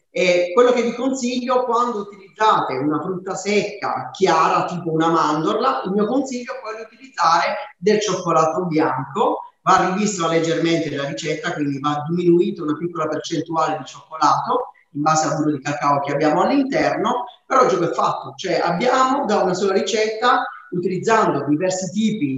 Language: Italian